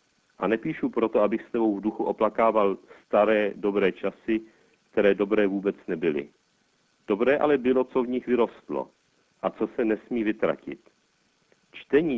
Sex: male